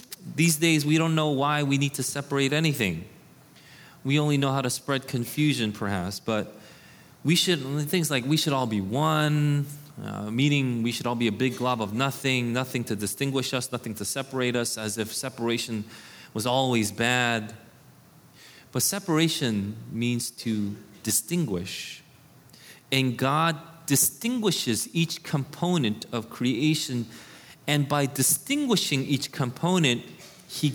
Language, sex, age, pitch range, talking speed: English, male, 30-49, 120-165 Hz, 140 wpm